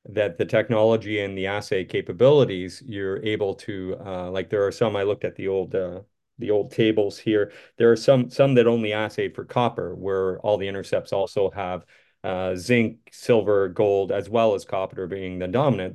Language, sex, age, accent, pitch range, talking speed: English, male, 40-59, American, 95-130 Hz, 190 wpm